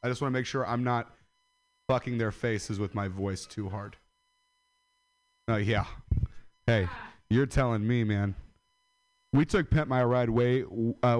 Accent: American